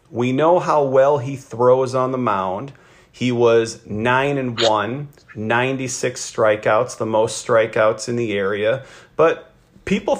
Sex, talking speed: male, 140 wpm